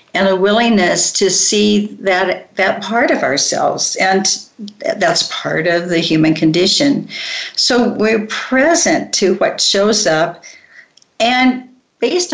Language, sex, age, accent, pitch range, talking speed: English, female, 50-69, American, 175-210 Hz, 125 wpm